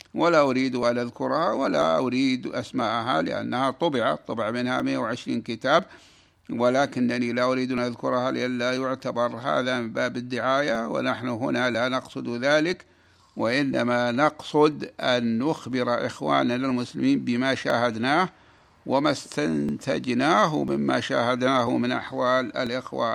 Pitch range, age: 120-150 Hz, 60-79